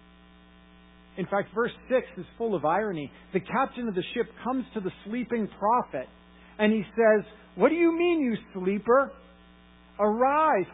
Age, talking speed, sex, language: 50-69, 155 wpm, male, English